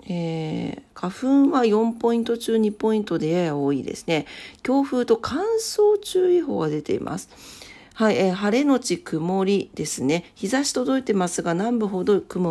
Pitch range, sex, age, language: 160-230 Hz, female, 40-59, Japanese